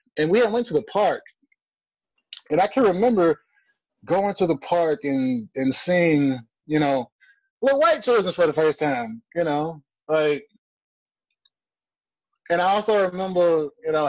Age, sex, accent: 20-39, male, American